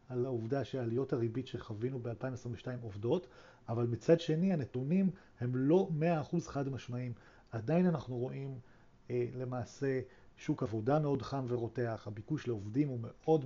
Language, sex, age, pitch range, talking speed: Hebrew, male, 40-59, 120-160 Hz, 135 wpm